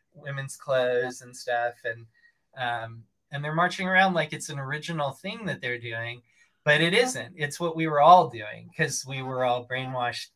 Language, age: English, 20-39